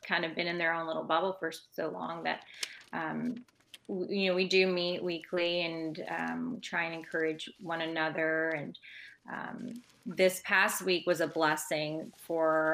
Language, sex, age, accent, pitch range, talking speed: English, female, 20-39, American, 160-190 Hz, 165 wpm